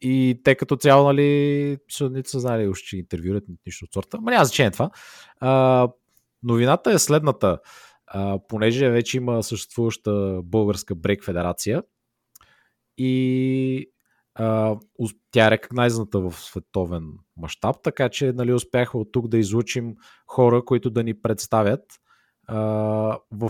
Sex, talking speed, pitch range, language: male, 135 wpm, 105-130 Hz, Bulgarian